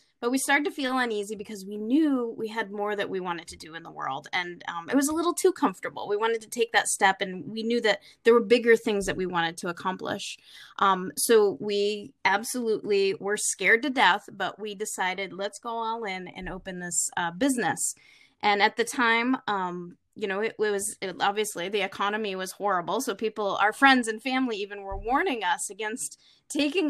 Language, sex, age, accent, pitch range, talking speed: English, female, 20-39, American, 195-235 Hz, 210 wpm